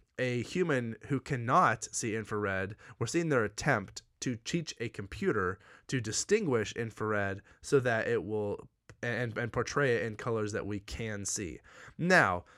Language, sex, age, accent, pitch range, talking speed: English, male, 20-39, American, 100-130 Hz, 155 wpm